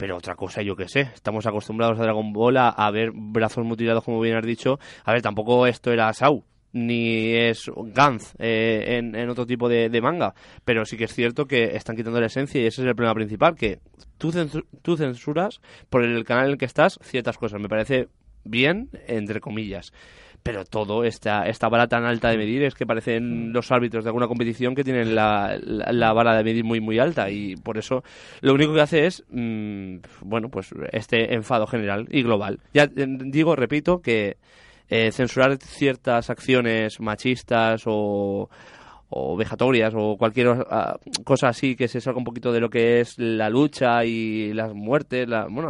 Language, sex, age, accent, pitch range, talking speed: Spanish, male, 20-39, Spanish, 110-125 Hz, 195 wpm